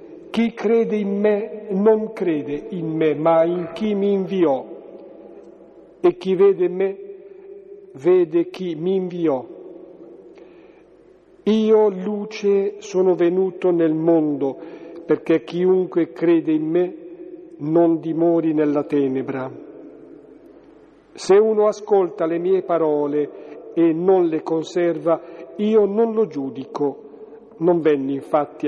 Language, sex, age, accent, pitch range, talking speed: Italian, male, 50-69, native, 155-200 Hz, 110 wpm